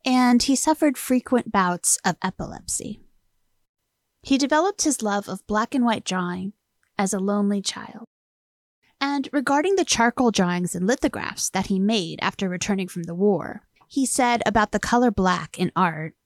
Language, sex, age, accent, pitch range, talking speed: English, female, 30-49, American, 190-250 Hz, 160 wpm